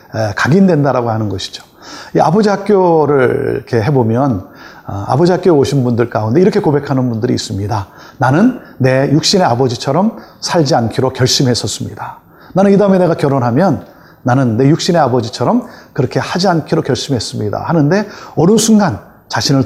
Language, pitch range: Korean, 115-165 Hz